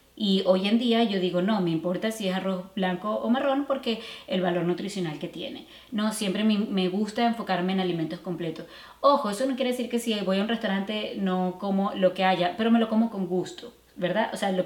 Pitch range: 180-230 Hz